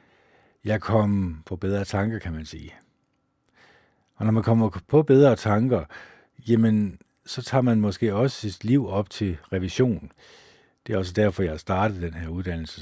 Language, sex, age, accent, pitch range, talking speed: Danish, male, 50-69, native, 90-110 Hz, 165 wpm